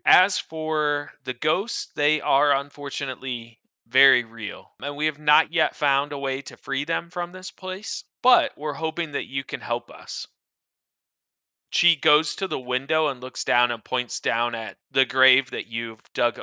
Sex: male